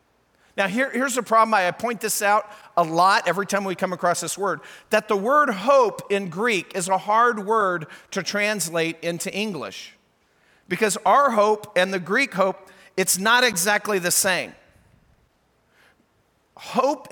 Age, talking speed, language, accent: 50-69, 155 wpm, English, American